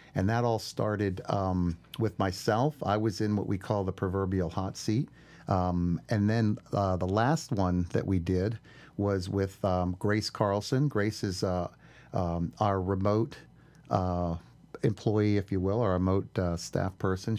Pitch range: 95-110 Hz